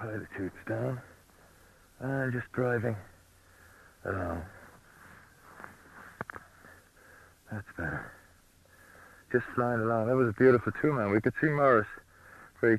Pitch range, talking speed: 90-110 Hz, 100 wpm